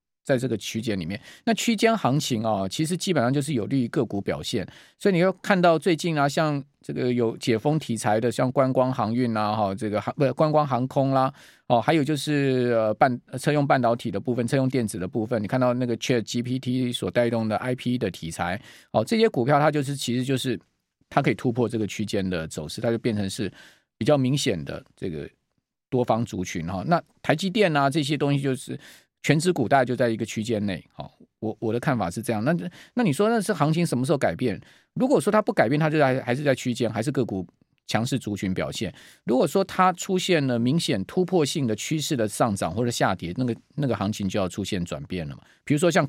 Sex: male